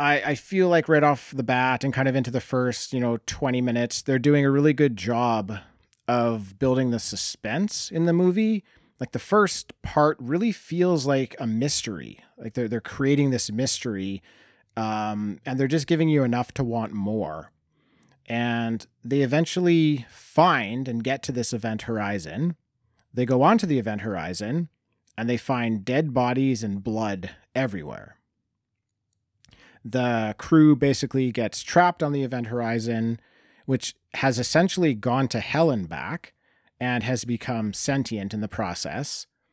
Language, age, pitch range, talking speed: English, 30-49, 110-140 Hz, 155 wpm